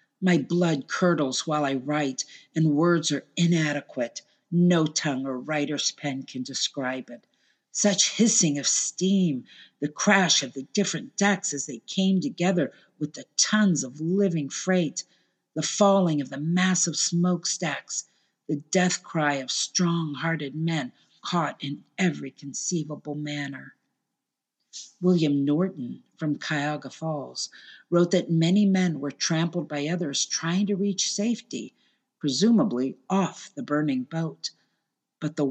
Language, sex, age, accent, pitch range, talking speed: English, female, 50-69, American, 145-185 Hz, 135 wpm